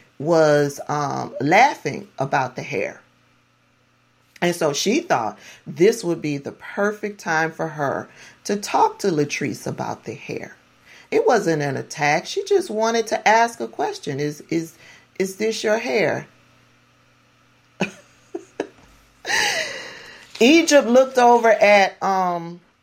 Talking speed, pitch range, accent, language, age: 125 wpm, 155-210 Hz, American, English, 40-59